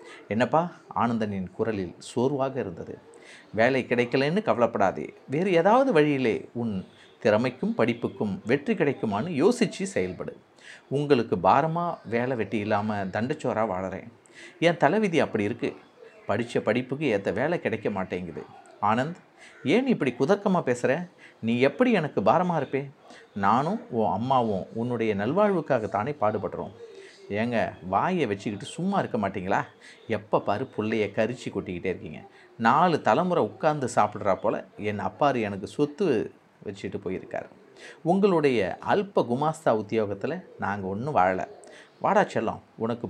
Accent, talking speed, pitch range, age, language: native, 115 wpm, 110-165 Hz, 50-69, Tamil